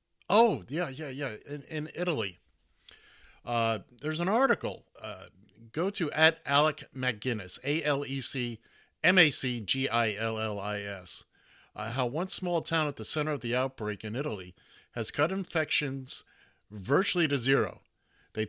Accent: American